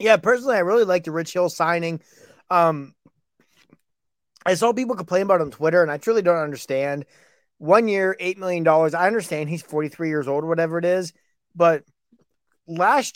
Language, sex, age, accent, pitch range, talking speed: English, male, 30-49, American, 155-200 Hz, 175 wpm